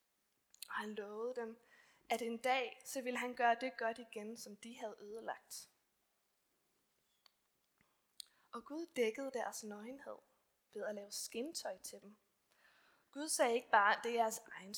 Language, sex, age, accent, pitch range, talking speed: Danish, female, 20-39, native, 210-260 Hz, 150 wpm